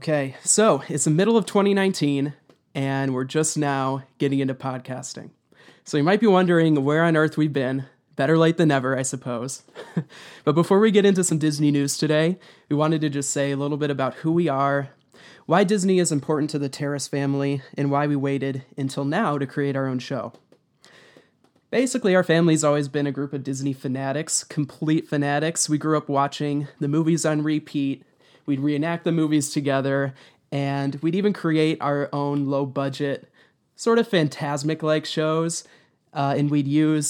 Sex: male